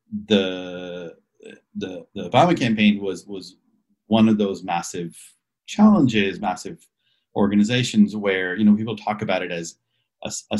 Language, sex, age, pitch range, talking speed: English, male, 30-49, 90-110 Hz, 135 wpm